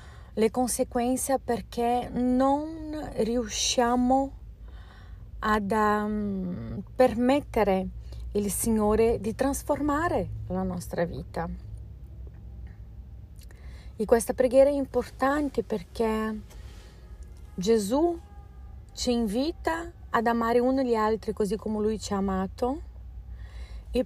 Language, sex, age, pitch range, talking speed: Italian, female, 30-49, 195-245 Hz, 90 wpm